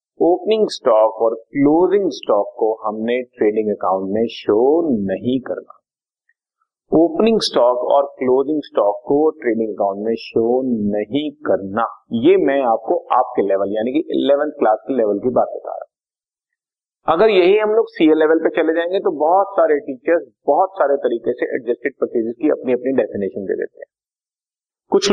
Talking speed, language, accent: 165 wpm, Hindi, native